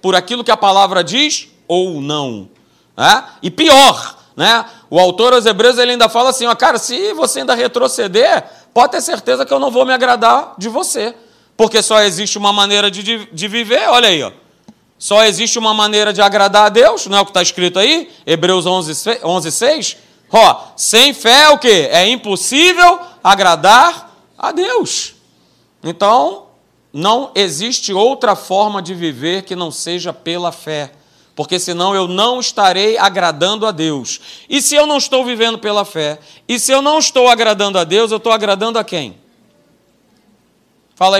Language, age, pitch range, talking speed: Portuguese, 40-59, 185-250 Hz, 175 wpm